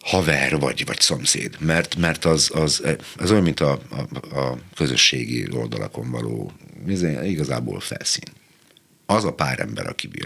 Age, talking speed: 60-79, 145 wpm